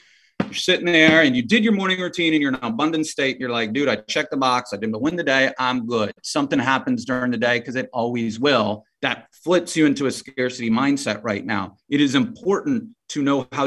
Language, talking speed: English, 235 wpm